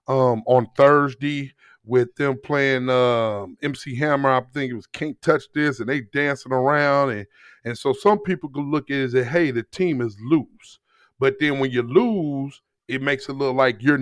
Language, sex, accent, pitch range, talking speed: English, male, American, 130-165 Hz, 200 wpm